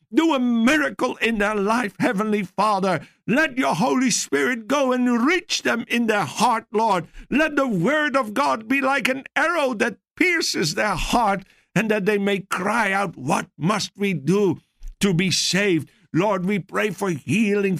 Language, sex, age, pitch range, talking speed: English, male, 60-79, 155-220 Hz, 170 wpm